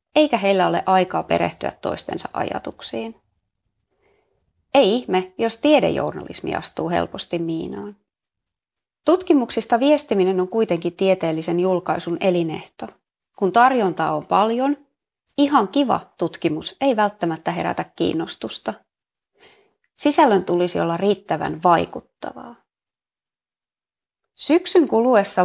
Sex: female